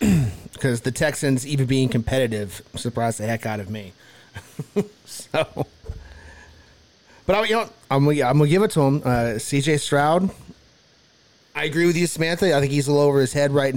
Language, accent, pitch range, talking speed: English, American, 130-165 Hz, 180 wpm